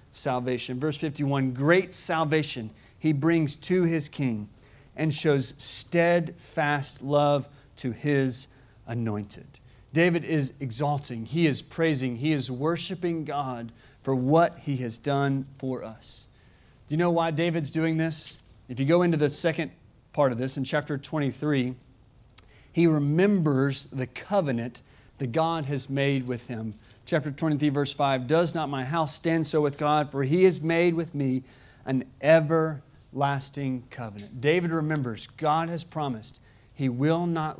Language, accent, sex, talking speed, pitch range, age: English, American, male, 145 wpm, 125-155 Hz, 40-59